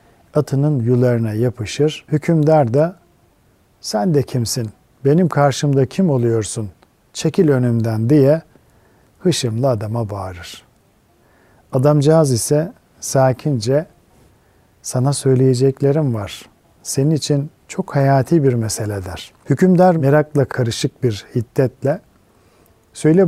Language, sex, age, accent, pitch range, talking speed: Turkish, male, 50-69, native, 110-145 Hz, 95 wpm